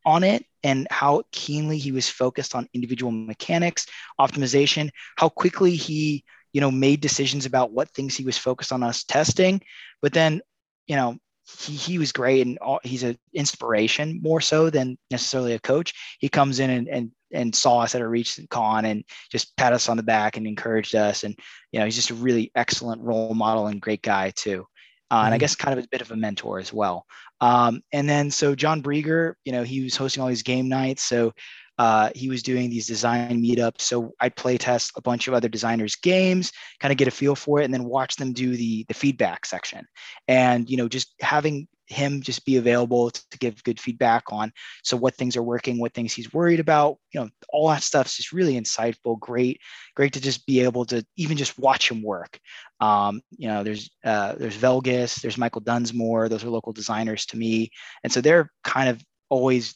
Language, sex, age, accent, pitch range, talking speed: English, male, 20-39, American, 115-140 Hz, 215 wpm